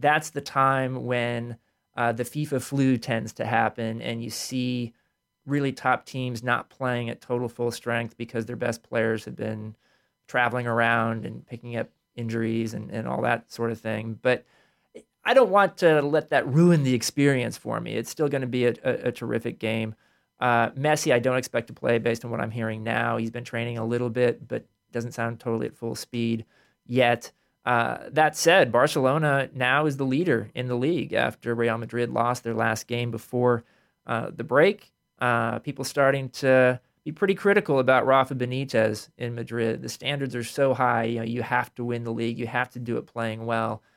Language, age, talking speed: English, 30-49, 200 wpm